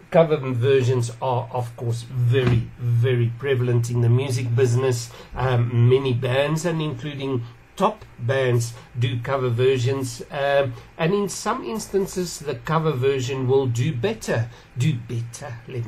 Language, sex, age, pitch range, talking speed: English, male, 60-79, 120-145 Hz, 135 wpm